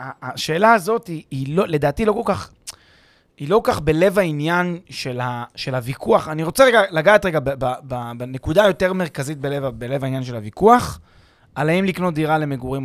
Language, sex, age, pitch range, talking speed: Hebrew, male, 30-49, 135-200 Hz, 185 wpm